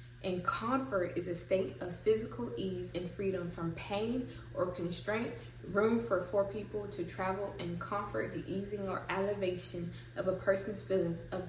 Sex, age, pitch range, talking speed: female, 10-29, 175-200 Hz, 160 wpm